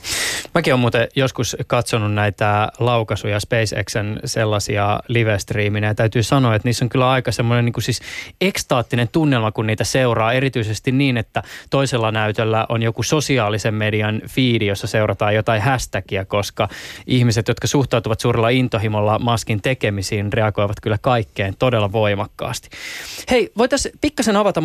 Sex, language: male, Finnish